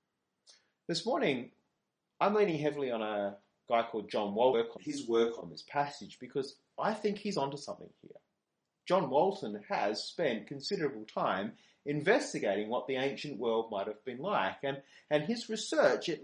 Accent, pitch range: Australian, 125-180 Hz